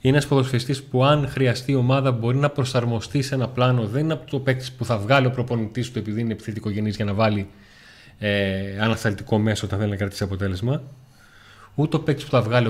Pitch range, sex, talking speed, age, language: 105-135 Hz, male, 215 wpm, 20-39, Greek